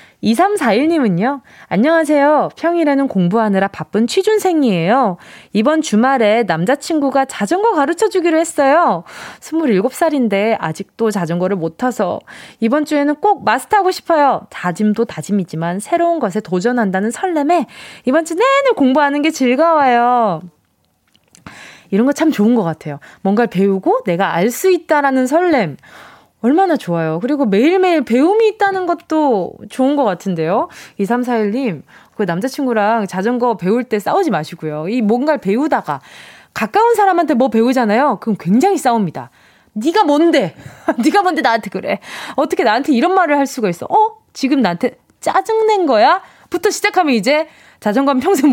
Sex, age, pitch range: female, 20-39, 205-315 Hz